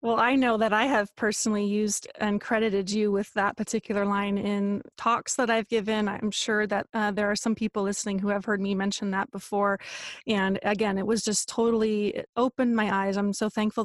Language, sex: English, female